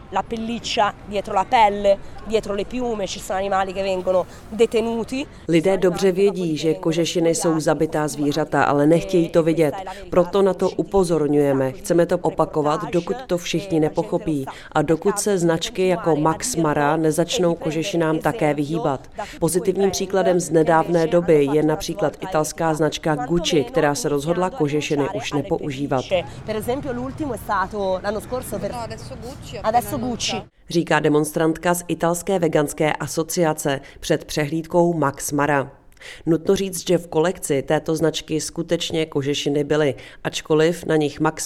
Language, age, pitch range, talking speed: Czech, 30-49, 150-180 Hz, 105 wpm